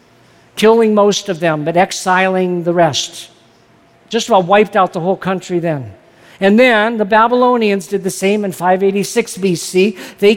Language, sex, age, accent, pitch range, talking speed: English, male, 50-69, American, 165-210 Hz, 155 wpm